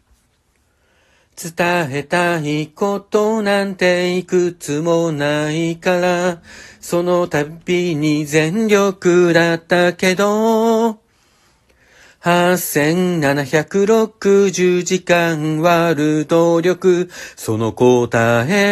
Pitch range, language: 175-220 Hz, Japanese